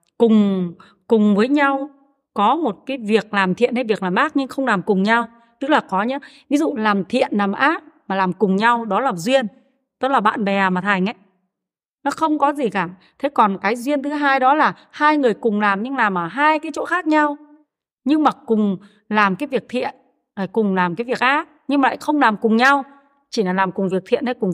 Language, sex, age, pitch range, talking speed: Vietnamese, female, 30-49, 205-280 Hz, 230 wpm